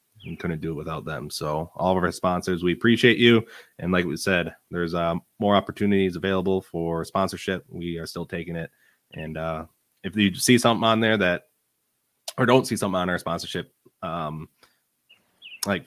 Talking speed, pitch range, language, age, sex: 180 wpm, 85-100 Hz, English, 20-39, male